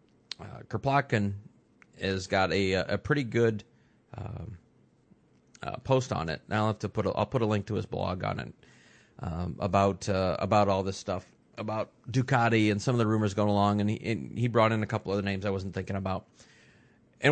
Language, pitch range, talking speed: English, 100-130 Hz, 205 wpm